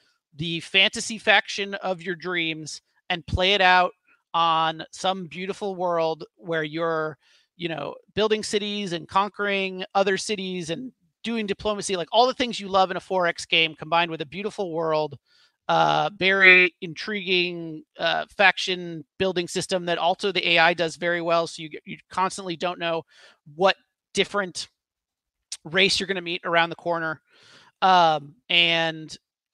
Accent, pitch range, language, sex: American, 165-195 Hz, English, male